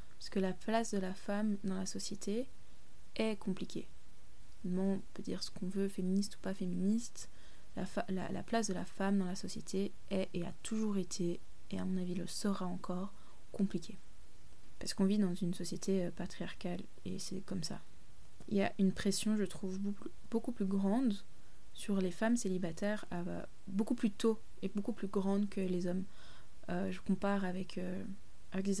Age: 20-39